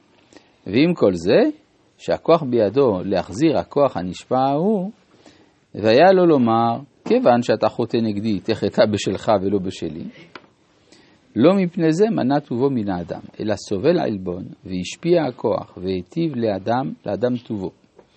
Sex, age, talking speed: male, 50-69, 120 wpm